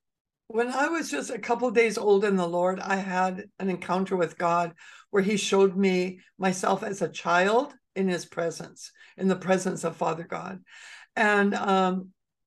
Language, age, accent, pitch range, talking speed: English, 60-79, American, 185-230 Hz, 180 wpm